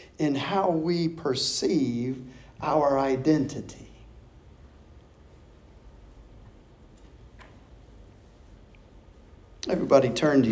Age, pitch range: 50-69, 140-220 Hz